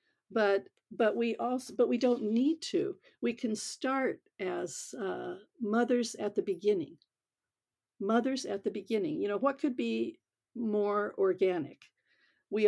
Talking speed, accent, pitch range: 140 wpm, American, 190-285 Hz